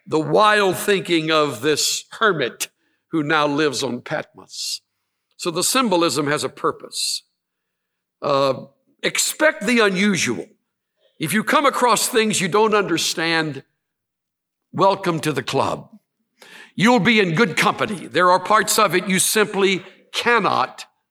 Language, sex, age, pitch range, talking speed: English, male, 60-79, 160-220 Hz, 130 wpm